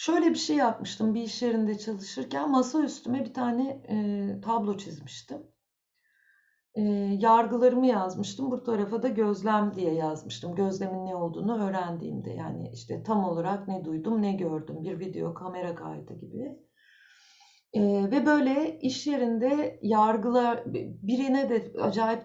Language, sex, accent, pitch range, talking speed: Turkish, female, native, 190-280 Hz, 125 wpm